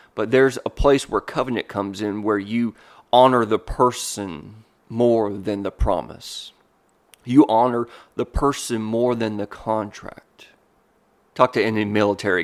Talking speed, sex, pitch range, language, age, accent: 140 wpm, male, 105-120 Hz, English, 30-49, American